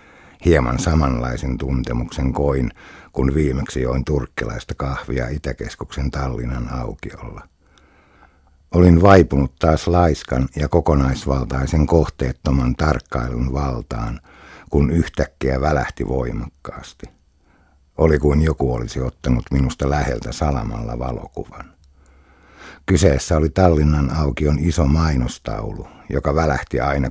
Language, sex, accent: Finnish, male, native